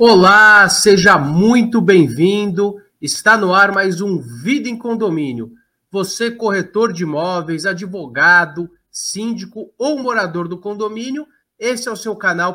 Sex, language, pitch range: male, Portuguese, 175-230 Hz